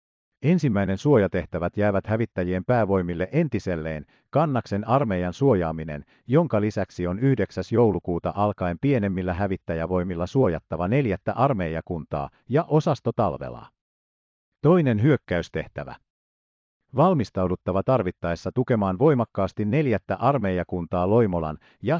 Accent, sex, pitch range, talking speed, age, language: native, male, 85-120 Hz, 85 wpm, 50-69, Finnish